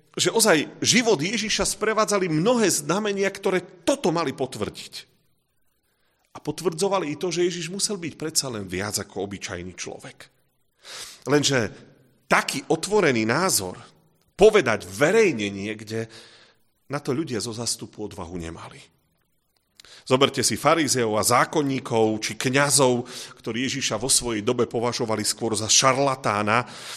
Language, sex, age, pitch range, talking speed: Slovak, male, 40-59, 115-160 Hz, 120 wpm